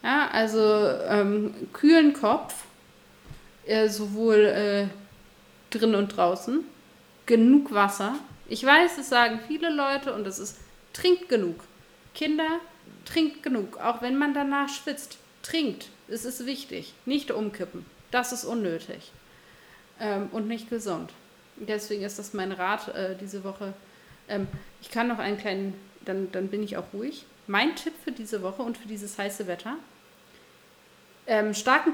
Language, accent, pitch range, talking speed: German, German, 195-260 Hz, 145 wpm